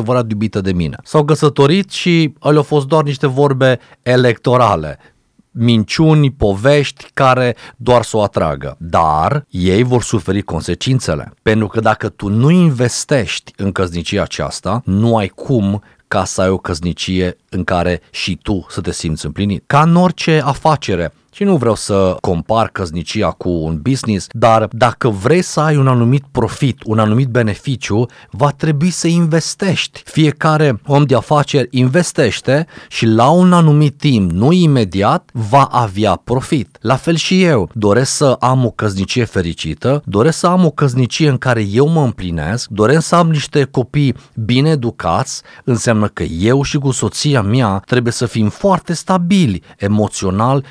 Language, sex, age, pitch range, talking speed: Romanian, male, 30-49, 105-145 Hz, 155 wpm